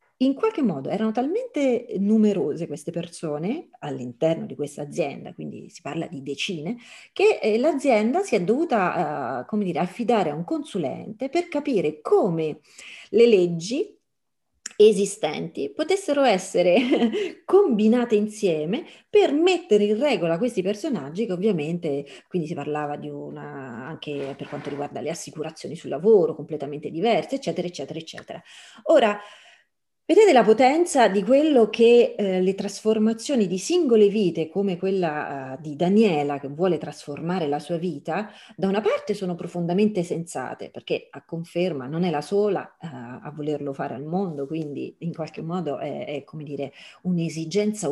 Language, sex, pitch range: Italian, female, 150-225 Hz